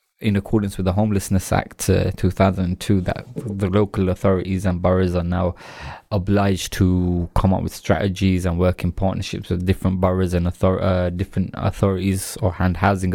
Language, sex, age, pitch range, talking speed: English, male, 20-39, 90-105 Hz, 170 wpm